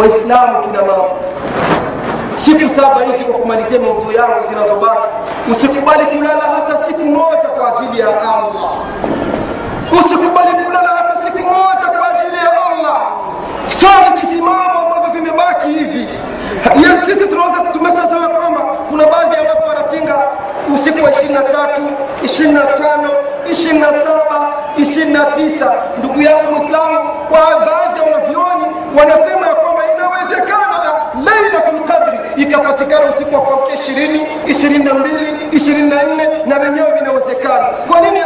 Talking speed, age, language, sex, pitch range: 95 wpm, 40-59, Swahili, male, 280-330 Hz